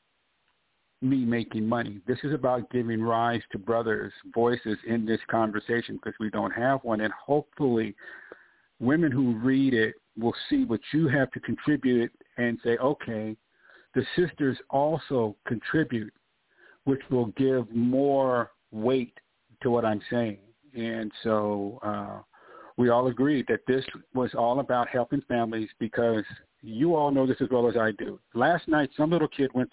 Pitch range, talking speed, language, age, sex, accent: 115-135 Hz, 155 wpm, English, 50-69, male, American